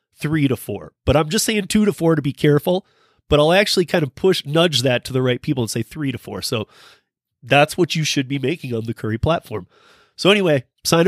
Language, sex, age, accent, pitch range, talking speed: English, male, 30-49, American, 125-155 Hz, 240 wpm